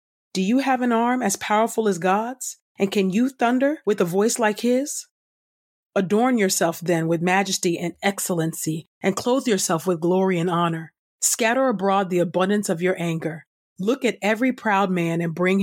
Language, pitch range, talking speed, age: English, 170-215 Hz, 175 wpm, 40-59